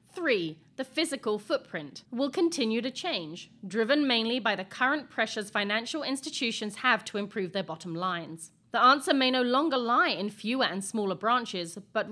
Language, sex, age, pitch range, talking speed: English, female, 30-49, 195-250 Hz, 170 wpm